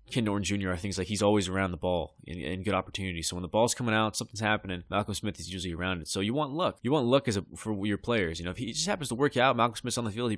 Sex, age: male, 20-39